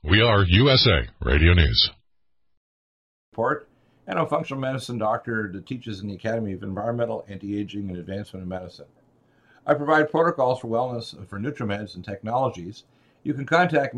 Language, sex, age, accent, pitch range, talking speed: English, male, 60-79, American, 105-135 Hz, 145 wpm